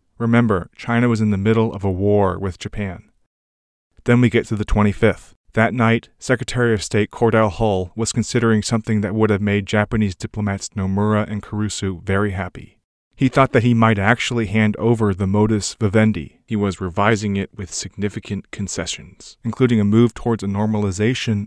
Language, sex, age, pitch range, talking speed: English, male, 30-49, 100-115 Hz, 175 wpm